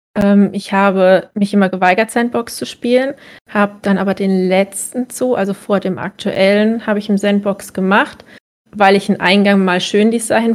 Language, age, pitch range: German, 20-39, 185-215 Hz